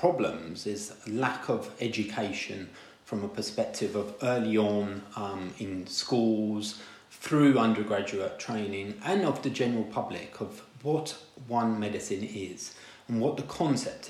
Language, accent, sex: English, British, male